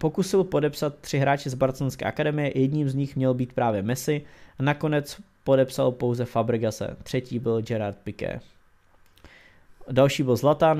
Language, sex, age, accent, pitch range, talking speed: English, male, 20-39, Czech, 115-140 Hz, 140 wpm